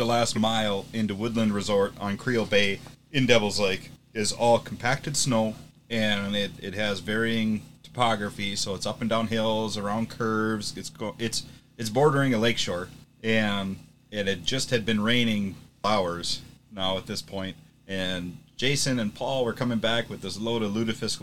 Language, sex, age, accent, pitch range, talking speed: English, male, 30-49, American, 100-125 Hz, 170 wpm